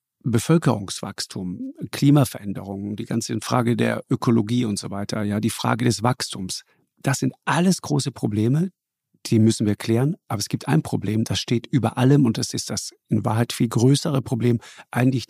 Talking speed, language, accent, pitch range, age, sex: 170 wpm, German, German, 110-140 Hz, 50-69, male